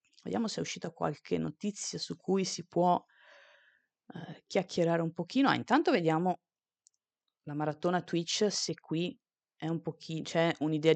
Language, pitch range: Italian, 140-180 Hz